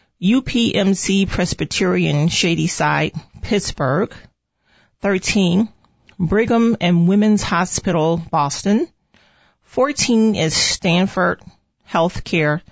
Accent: American